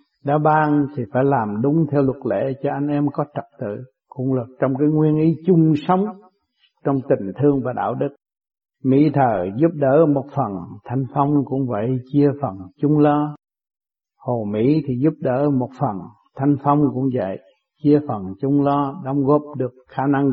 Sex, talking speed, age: male, 185 wpm, 60-79